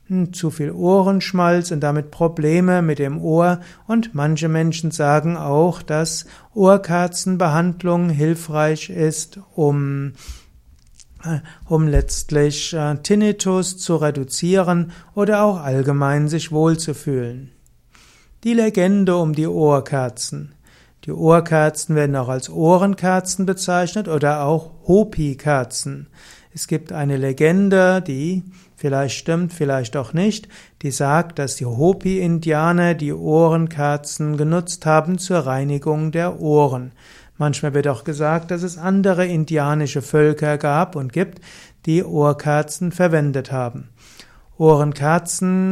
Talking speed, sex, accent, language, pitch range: 115 wpm, male, German, German, 145-175 Hz